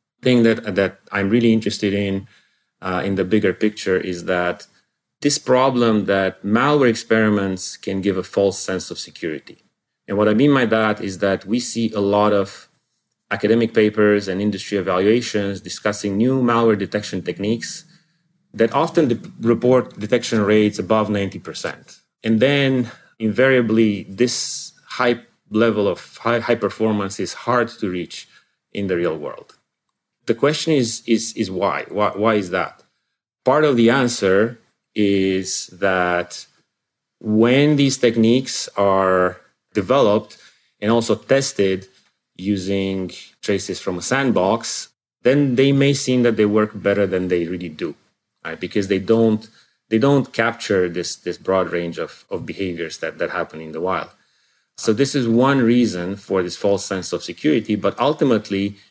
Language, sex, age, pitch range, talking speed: English, male, 30-49, 95-120 Hz, 150 wpm